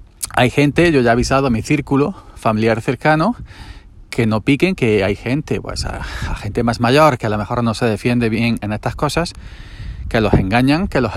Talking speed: 210 wpm